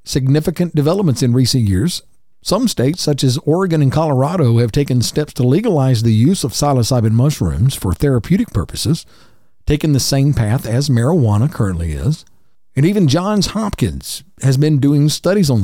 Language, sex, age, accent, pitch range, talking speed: English, male, 50-69, American, 110-155 Hz, 160 wpm